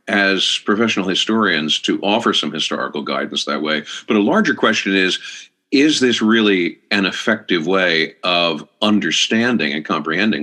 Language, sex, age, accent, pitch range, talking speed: English, male, 50-69, American, 105-175 Hz, 145 wpm